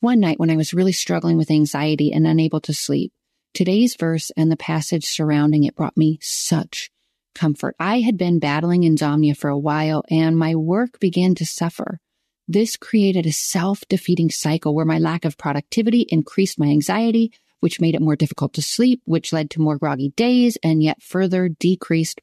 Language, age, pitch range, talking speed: English, 30-49, 155-215 Hz, 185 wpm